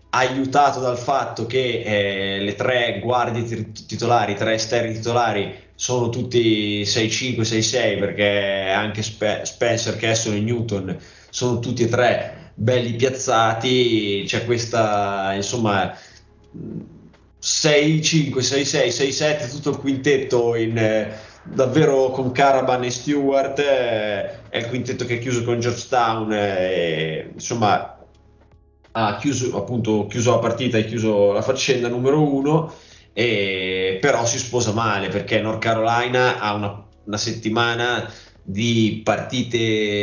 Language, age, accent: Italian, 20-39, native